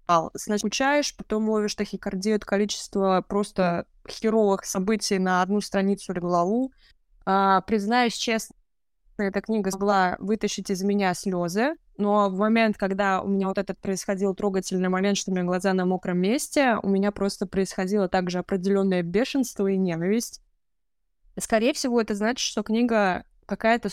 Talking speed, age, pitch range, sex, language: 150 wpm, 20-39, 185-215 Hz, female, Russian